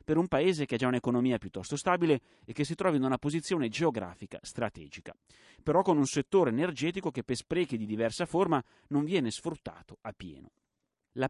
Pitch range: 115-150 Hz